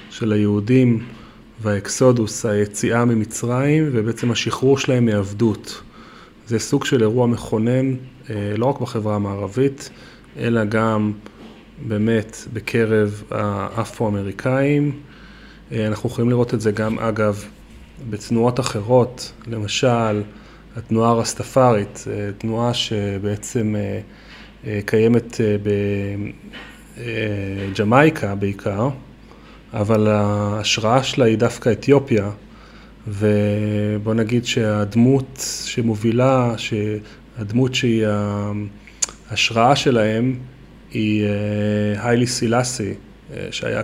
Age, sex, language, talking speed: 30-49, male, Hebrew, 80 wpm